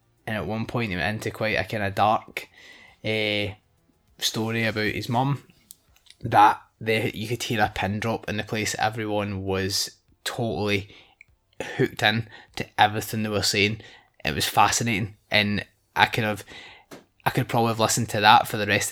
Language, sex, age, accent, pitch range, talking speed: English, male, 20-39, British, 105-120 Hz, 165 wpm